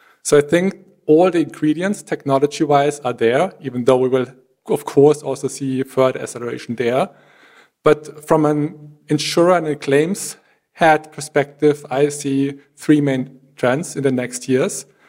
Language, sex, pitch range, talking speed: English, male, 135-155 Hz, 150 wpm